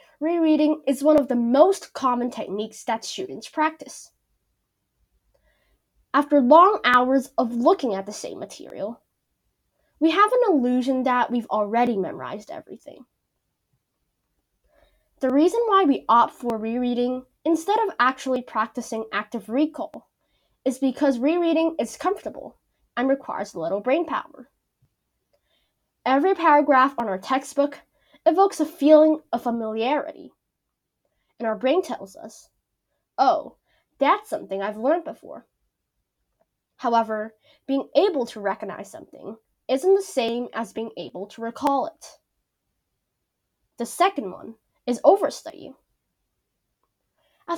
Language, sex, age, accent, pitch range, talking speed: English, female, 10-29, American, 235-315 Hz, 120 wpm